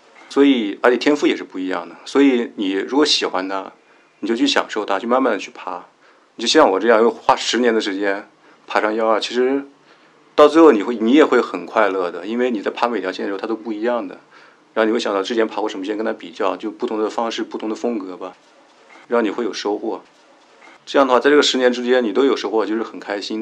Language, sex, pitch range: Chinese, male, 105-130 Hz